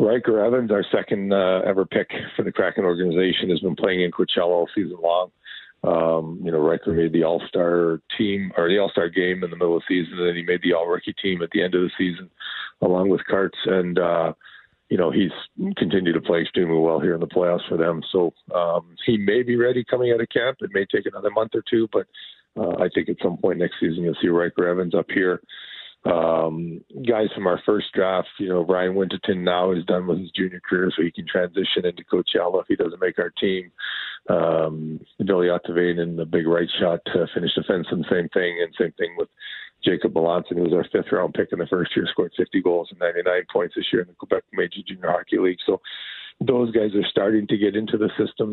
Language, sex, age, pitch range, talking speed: English, male, 40-59, 85-105 Hz, 230 wpm